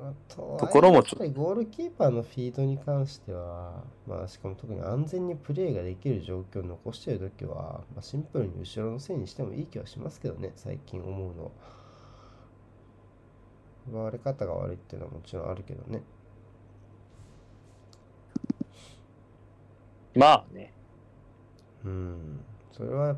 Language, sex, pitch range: Japanese, male, 100-125 Hz